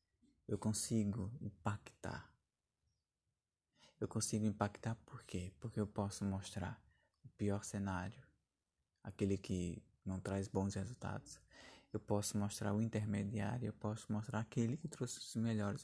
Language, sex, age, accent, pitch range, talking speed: Portuguese, male, 20-39, Brazilian, 100-115 Hz, 130 wpm